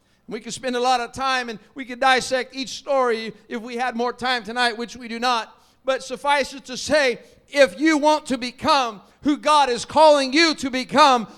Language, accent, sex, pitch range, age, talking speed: English, American, male, 255-320 Hz, 50-69, 210 wpm